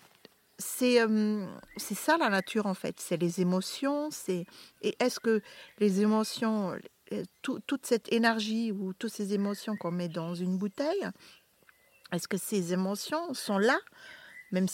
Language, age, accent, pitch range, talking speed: French, 40-59, French, 190-230 Hz, 145 wpm